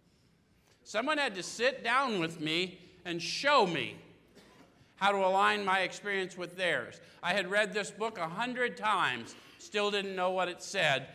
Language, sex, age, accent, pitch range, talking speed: English, male, 50-69, American, 170-205 Hz, 165 wpm